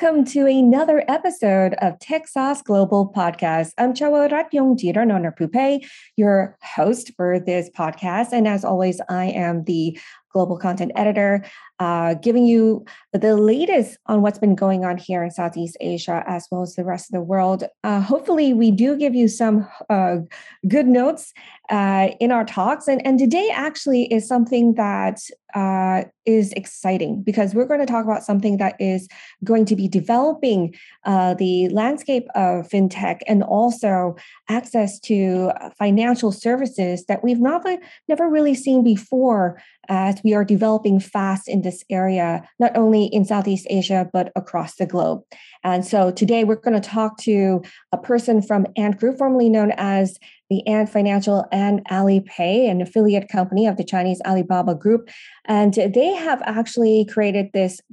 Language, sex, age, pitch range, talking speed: English, female, 20-39, 185-240 Hz, 160 wpm